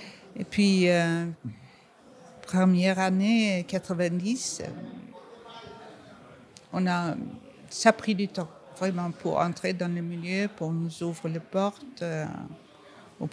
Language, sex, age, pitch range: Arabic, female, 60-79, 160-190 Hz